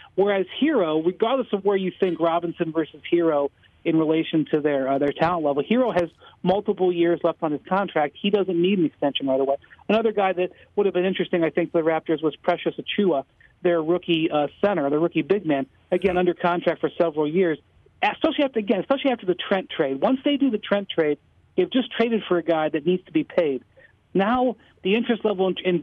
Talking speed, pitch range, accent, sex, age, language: 215 wpm, 165-210 Hz, American, male, 50-69, English